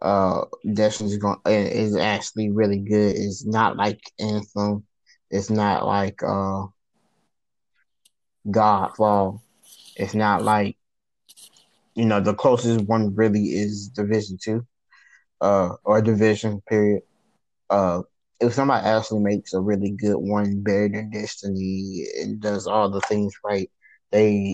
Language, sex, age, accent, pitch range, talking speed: English, male, 20-39, American, 100-115 Hz, 125 wpm